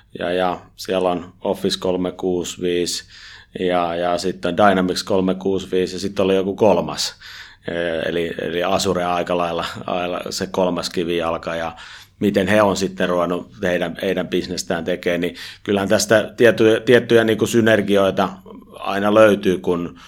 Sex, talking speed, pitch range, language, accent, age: male, 135 wpm, 85-100 Hz, Finnish, native, 30-49